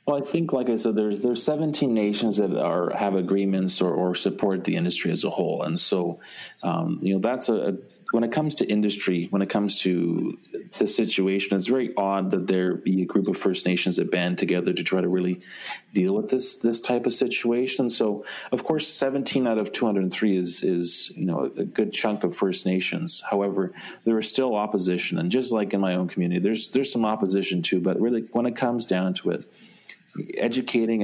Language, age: English, 30-49